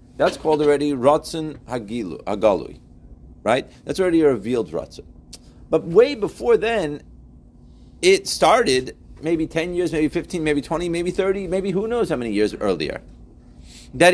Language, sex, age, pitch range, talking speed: English, male, 40-59, 115-180 Hz, 140 wpm